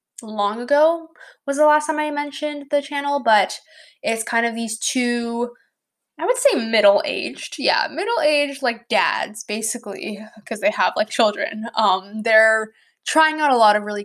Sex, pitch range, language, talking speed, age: female, 210-285 Hz, English, 160 wpm, 10-29